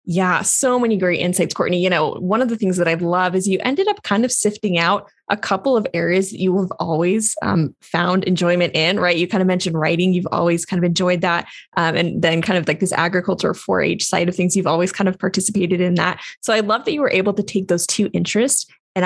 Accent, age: American, 20-39